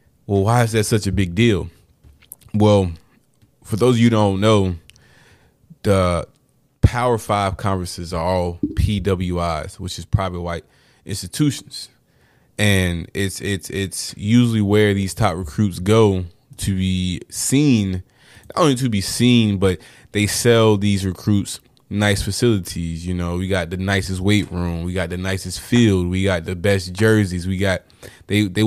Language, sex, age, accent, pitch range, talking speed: English, male, 20-39, American, 95-110 Hz, 155 wpm